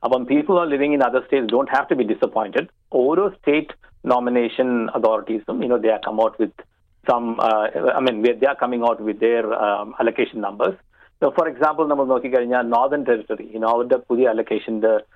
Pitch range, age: 110-140 Hz, 50-69